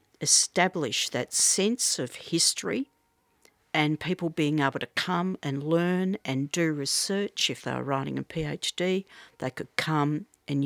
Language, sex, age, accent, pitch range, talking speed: English, female, 50-69, Australian, 140-180 Hz, 145 wpm